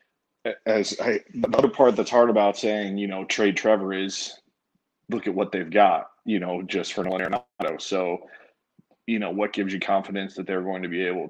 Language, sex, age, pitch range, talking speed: English, male, 20-39, 95-110 Hz, 200 wpm